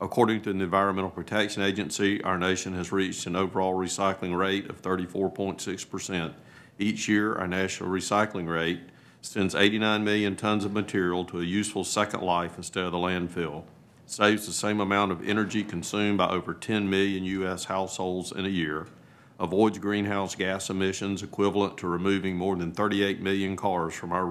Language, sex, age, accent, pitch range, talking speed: English, male, 50-69, American, 95-105 Hz, 165 wpm